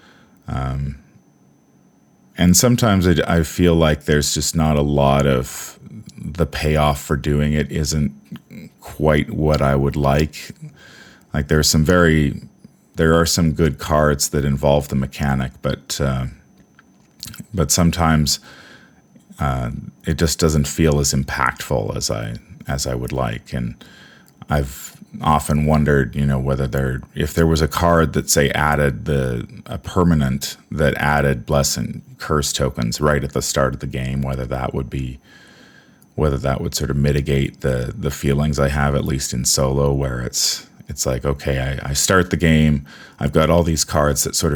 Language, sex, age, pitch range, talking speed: English, male, 30-49, 70-75 Hz, 165 wpm